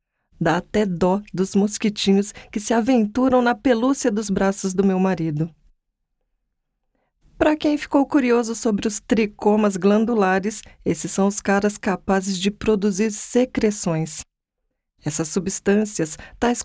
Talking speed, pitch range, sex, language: 125 wpm, 190-235 Hz, female, Portuguese